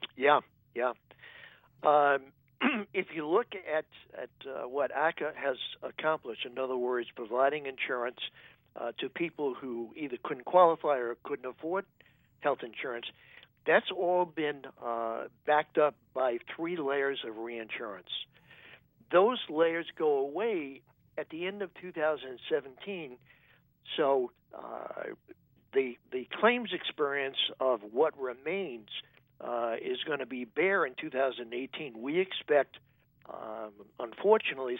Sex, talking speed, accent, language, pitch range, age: male, 120 wpm, American, English, 130-185 Hz, 60-79